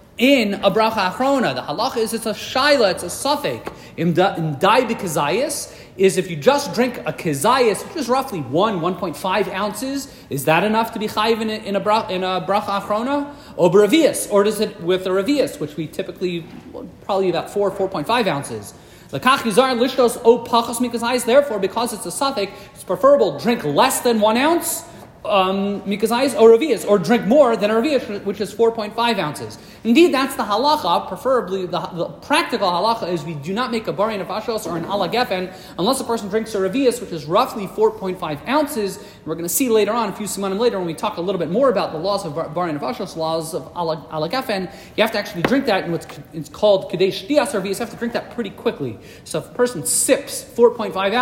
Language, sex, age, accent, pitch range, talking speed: English, male, 40-59, American, 175-235 Hz, 200 wpm